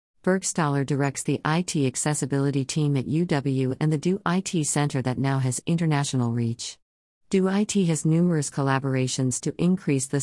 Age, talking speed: 50-69, 140 wpm